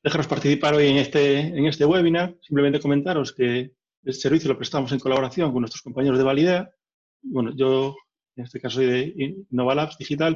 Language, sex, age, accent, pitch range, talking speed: Spanish, male, 30-49, Spanish, 130-165 Hz, 180 wpm